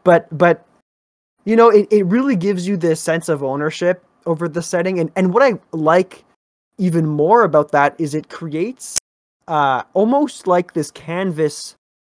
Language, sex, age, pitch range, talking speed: English, male, 20-39, 145-185 Hz, 165 wpm